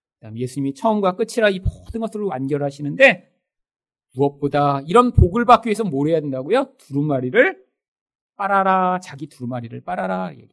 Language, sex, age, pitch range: Korean, male, 40-59, 140-230 Hz